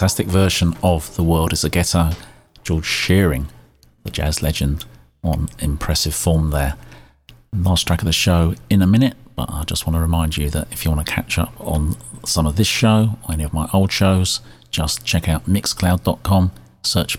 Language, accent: English, British